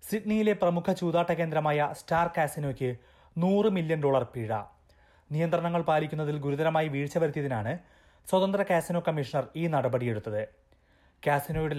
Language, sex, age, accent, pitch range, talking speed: Malayalam, male, 30-49, native, 130-175 Hz, 105 wpm